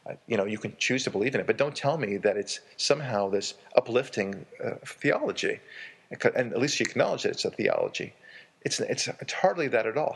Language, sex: English, male